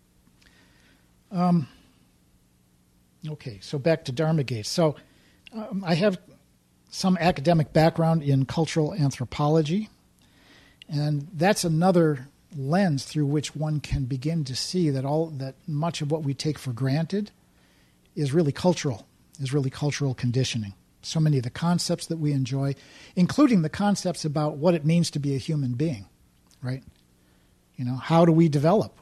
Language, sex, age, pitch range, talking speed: English, male, 50-69, 110-165 Hz, 145 wpm